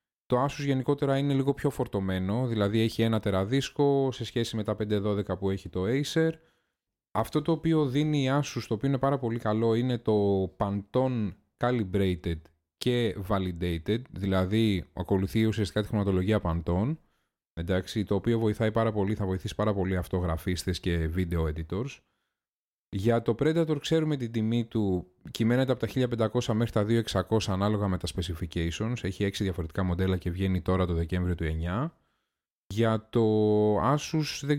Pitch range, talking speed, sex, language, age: 95-135 Hz, 160 wpm, male, Greek, 20-39